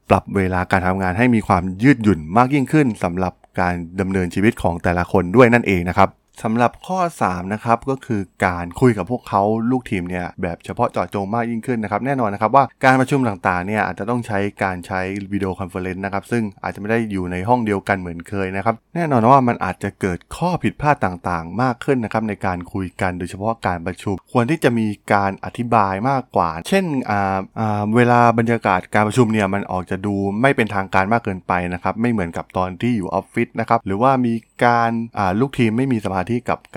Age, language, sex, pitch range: 20-39, Thai, male, 95-120 Hz